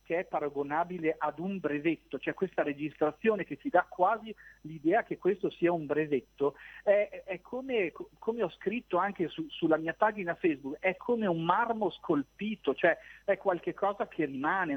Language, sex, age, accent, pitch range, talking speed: Italian, male, 40-59, native, 155-210 Hz, 170 wpm